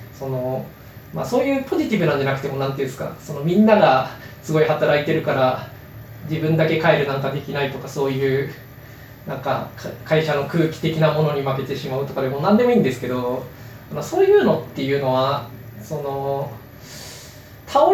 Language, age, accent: Japanese, 20-39, native